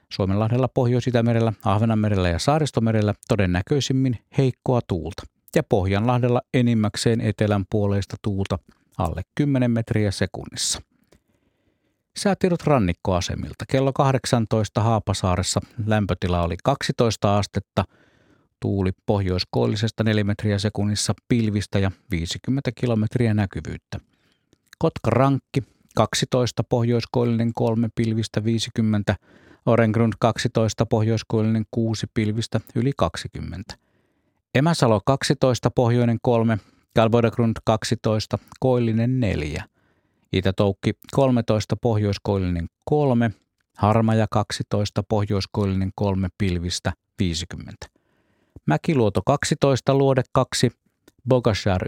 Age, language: 50-69, Finnish